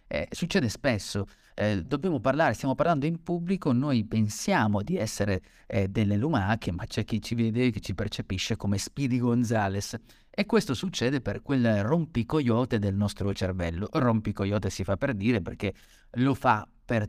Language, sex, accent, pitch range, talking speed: Italian, male, native, 100-130 Hz, 160 wpm